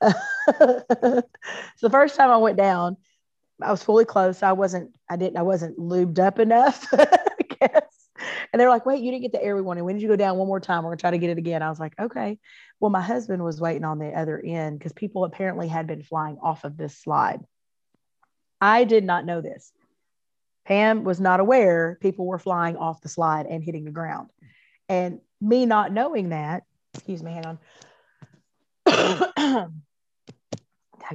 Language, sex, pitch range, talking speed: English, female, 165-220 Hz, 190 wpm